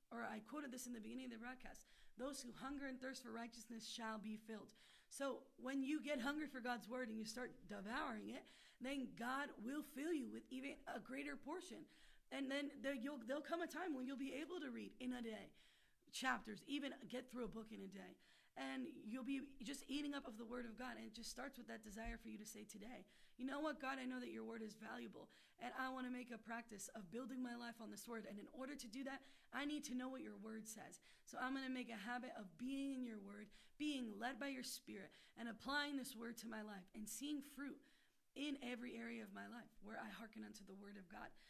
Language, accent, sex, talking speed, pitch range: English, American, female, 245 wpm, 235-280 Hz